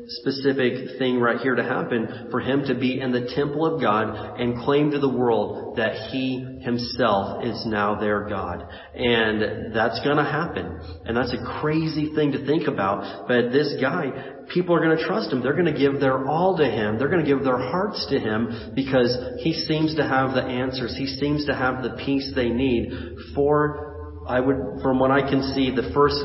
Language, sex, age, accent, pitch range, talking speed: English, male, 30-49, American, 115-140 Hz, 195 wpm